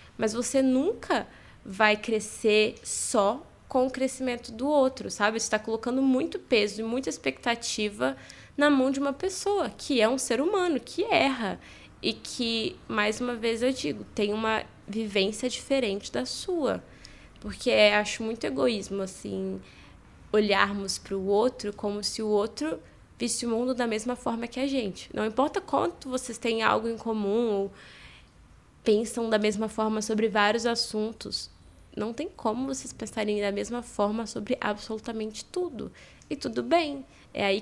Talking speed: 155 wpm